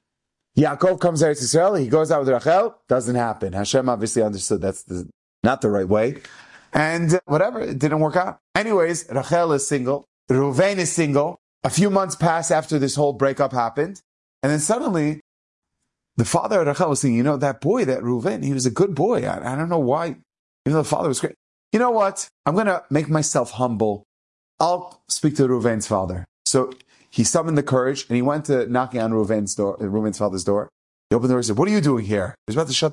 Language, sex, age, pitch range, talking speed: English, male, 30-49, 125-185 Hz, 215 wpm